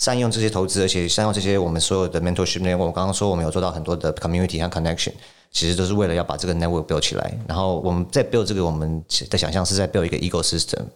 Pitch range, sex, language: 85-95 Hz, male, Chinese